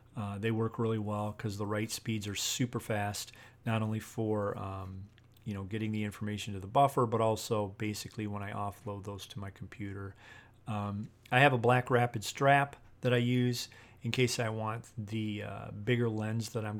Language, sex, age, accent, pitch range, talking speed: English, male, 40-59, American, 105-120 Hz, 195 wpm